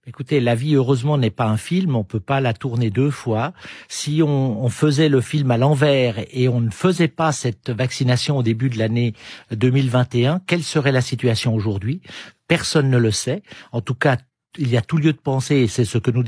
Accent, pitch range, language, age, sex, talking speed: French, 120-150 Hz, French, 50-69, male, 220 wpm